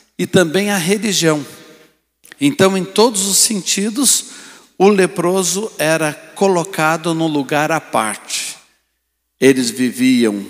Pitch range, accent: 145-195 Hz, Brazilian